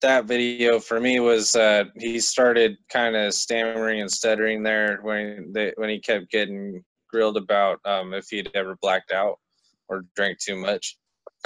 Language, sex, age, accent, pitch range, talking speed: English, male, 20-39, American, 95-110 Hz, 170 wpm